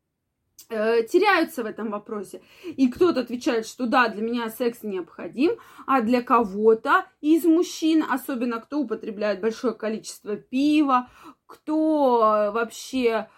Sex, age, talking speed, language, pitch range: female, 20-39, 115 wpm, Russian, 235-310 Hz